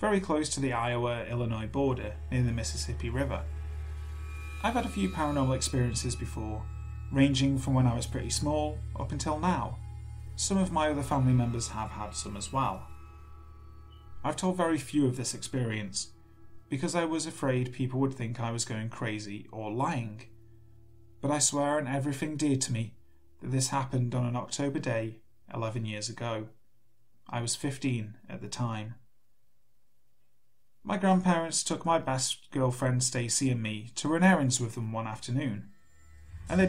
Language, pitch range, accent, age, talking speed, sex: English, 95-135 Hz, British, 30-49, 165 wpm, male